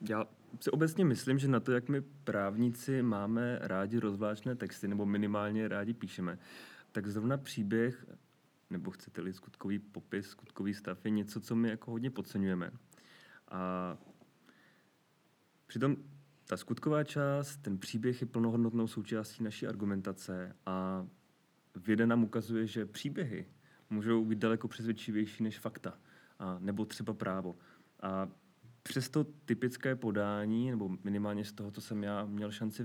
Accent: native